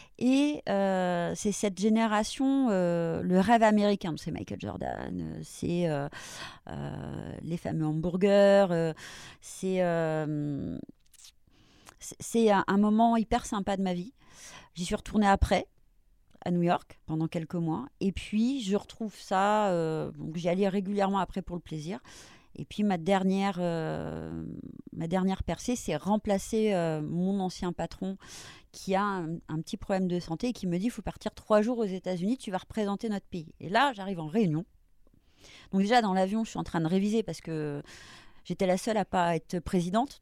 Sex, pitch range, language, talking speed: female, 170-210 Hz, French, 175 wpm